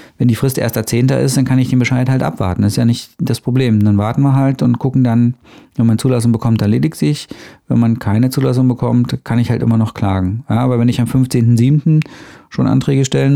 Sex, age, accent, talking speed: male, 40-59, German, 240 wpm